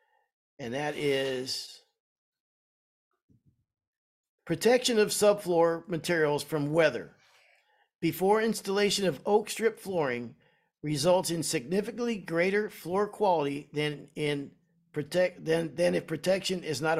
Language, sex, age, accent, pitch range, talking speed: English, male, 50-69, American, 155-205 Hz, 105 wpm